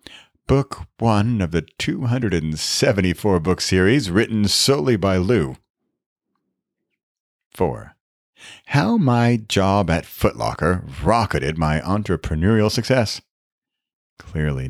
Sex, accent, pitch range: male, American, 85-115 Hz